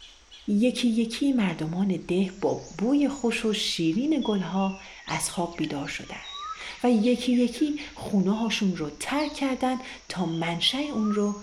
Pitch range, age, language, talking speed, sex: 170-245 Hz, 40-59, Persian, 135 wpm, female